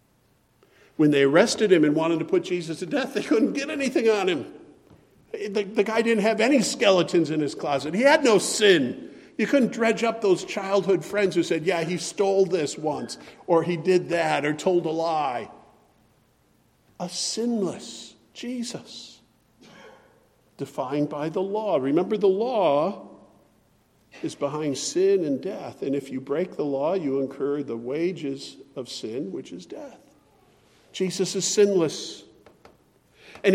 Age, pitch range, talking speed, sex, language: 50-69, 155-205 Hz, 155 wpm, male, English